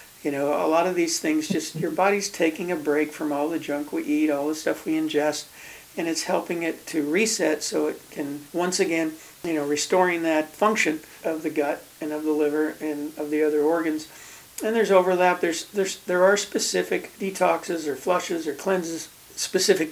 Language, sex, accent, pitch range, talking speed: English, male, American, 150-175 Hz, 200 wpm